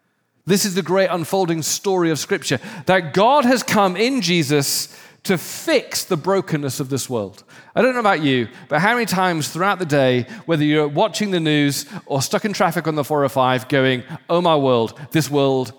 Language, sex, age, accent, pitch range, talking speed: English, male, 40-59, British, 140-195 Hz, 195 wpm